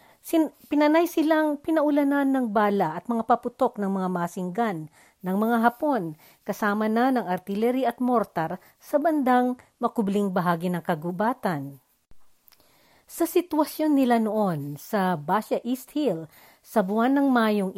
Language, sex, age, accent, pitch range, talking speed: Filipino, female, 50-69, native, 185-275 Hz, 130 wpm